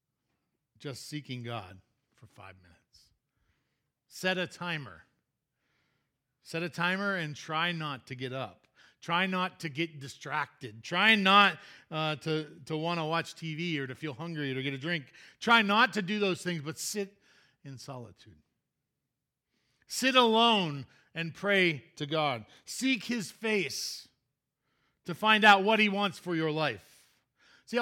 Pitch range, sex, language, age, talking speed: 125-175 Hz, male, English, 40-59, 150 wpm